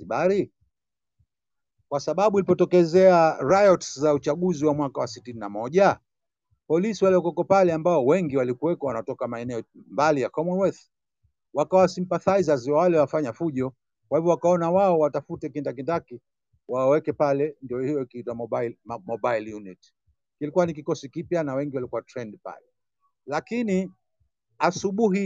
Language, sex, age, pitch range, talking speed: Swahili, male, 60-79, 115-160 Hz, 135 wpm